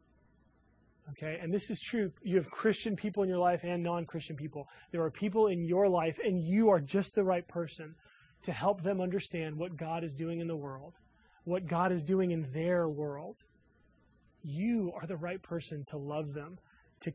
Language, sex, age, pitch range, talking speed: English, male, 20-39, 155-185 Hz, 195 wpm